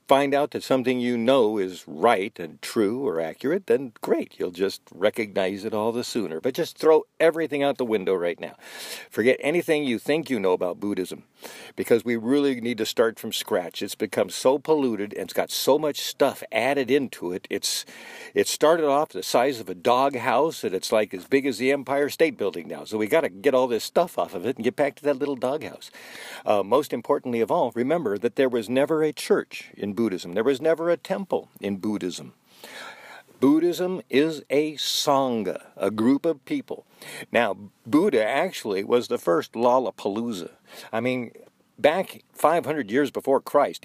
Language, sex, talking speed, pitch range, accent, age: English, male, 195 wpm, 115-160 Hz, American, 50-69